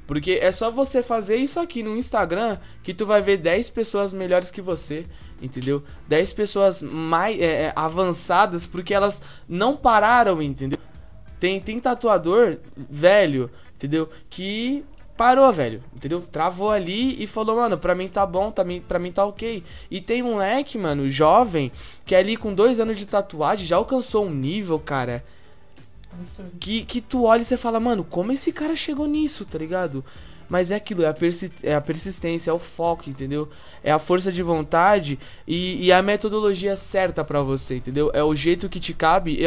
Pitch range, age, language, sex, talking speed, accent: 150-215 Hz, 10-29, Portuguese, male, 175 wpm, Brazilian